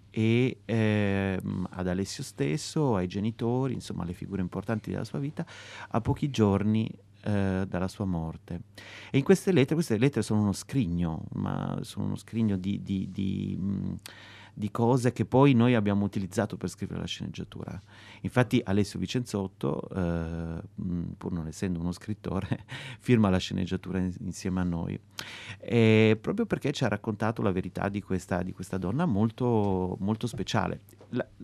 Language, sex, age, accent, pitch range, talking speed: Italian, male, 30-49, native, 95-120 Hz, 150 wpm